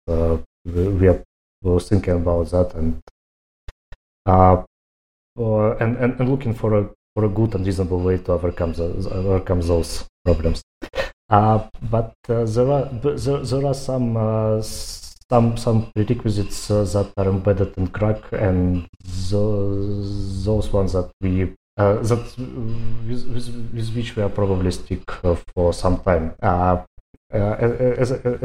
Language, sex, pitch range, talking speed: English, male, 90-110 Hz, 145 wpm